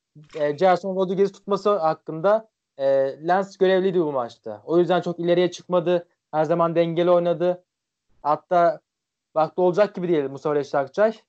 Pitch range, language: 160-185 Hz, Turkish